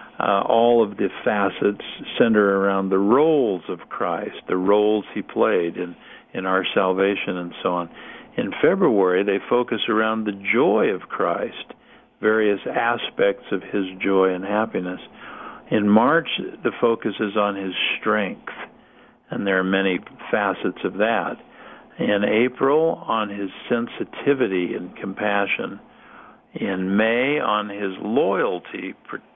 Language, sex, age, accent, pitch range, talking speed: English, male, 50-69, American, 95-115 Hz, 135 wpm